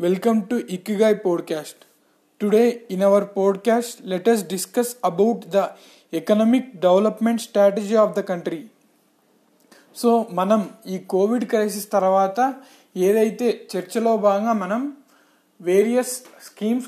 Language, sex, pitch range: Telugu, male, 195-235 Hz